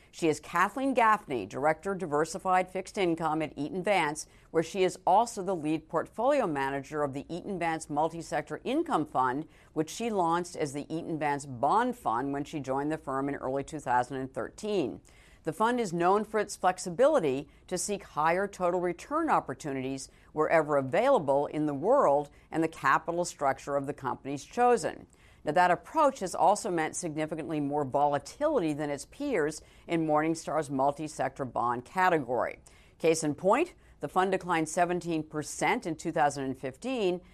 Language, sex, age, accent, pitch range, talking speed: English, female, 50-69, American, 145-185 Hz, 155 wpm